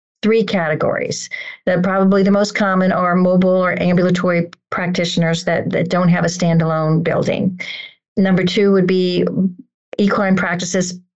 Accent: American